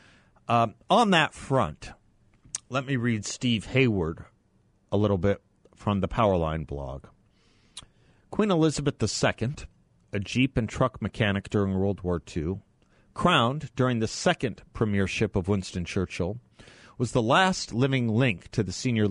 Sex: male